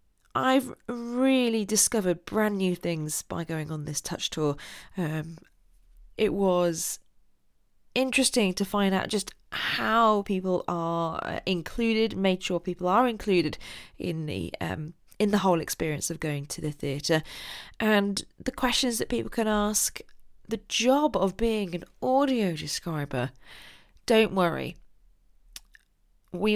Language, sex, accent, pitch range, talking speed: English, female, British, 155-200 Hz, 130 wpm